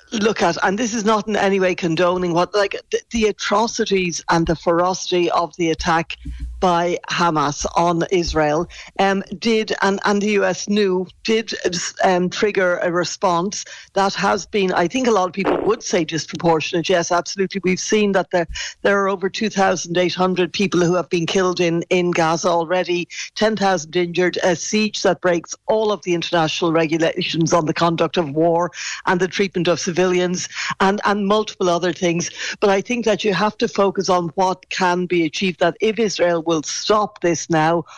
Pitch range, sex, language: 170-200 Hz, female, English